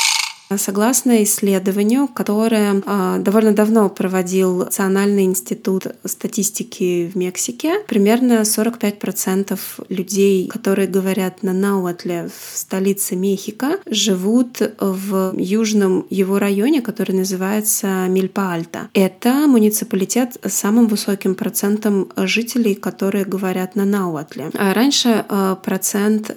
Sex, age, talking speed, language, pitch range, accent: female, 20-39, 95 wpm, Russian, 190-220 Hz, native